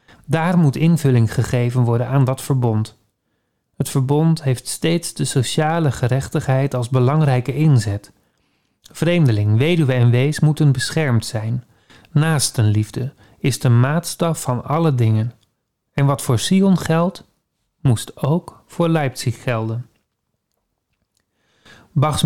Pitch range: 120-150 Hz